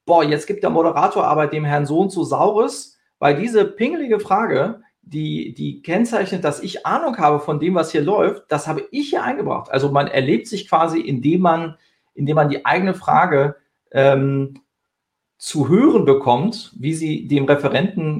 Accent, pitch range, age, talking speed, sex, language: German, 140-190 Hz, 40-59, 170 wpm, male, German